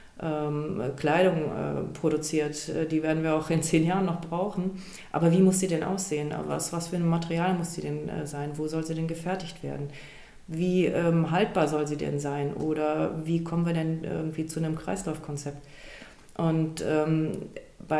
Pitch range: 155-185 Hz